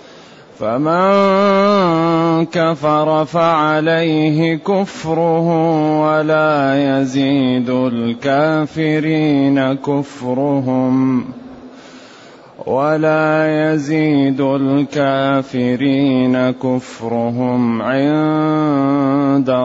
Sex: male